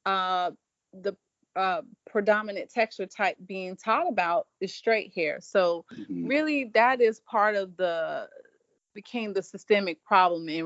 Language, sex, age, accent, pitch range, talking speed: English, female, 30-49, American, 175-225 Hz, 135 wpm